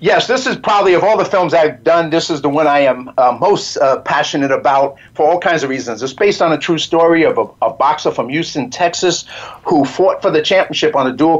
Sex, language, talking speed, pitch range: male, English, 245 wpm, 135-165 Hz